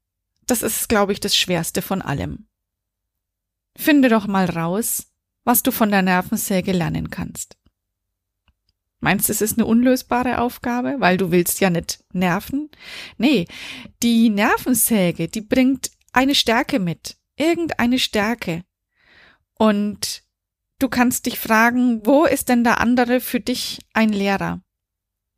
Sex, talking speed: female, 130 wpm